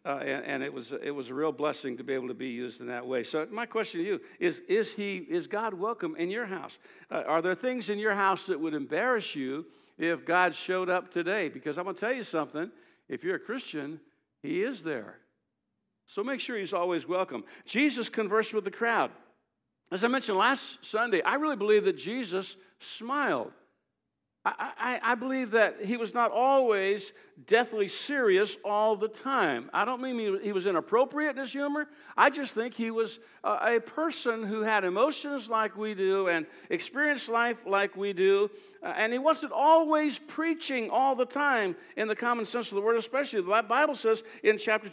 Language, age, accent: English, 60-79, American